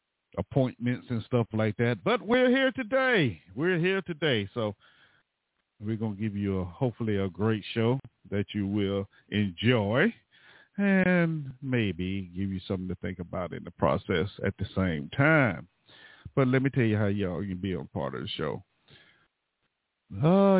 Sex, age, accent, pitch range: male, 50-69, American, 95-130 Hz